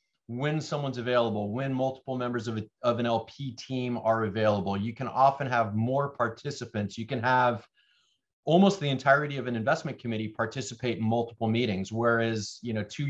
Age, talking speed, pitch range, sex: 30-49, 175 wpm, 110-130 Hz, male